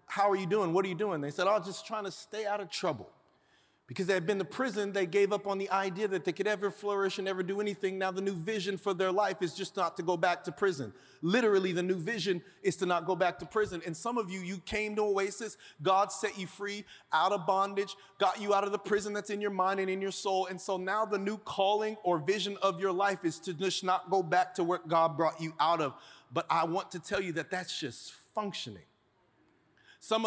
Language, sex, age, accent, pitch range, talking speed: English, male, 40-59, American, 175-205 Hz, 255 wpm